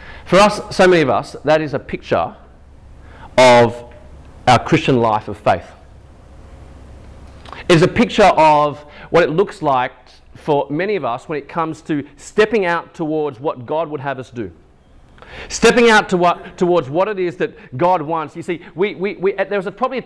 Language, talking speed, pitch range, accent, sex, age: English, 185 wpm, 110-175 Hz, Australian, male, 40-59